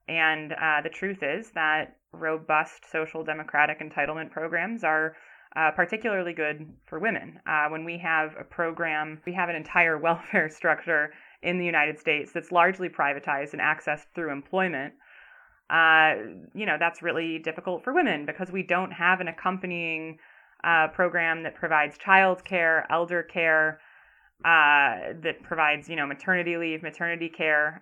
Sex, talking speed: female, 155 wpm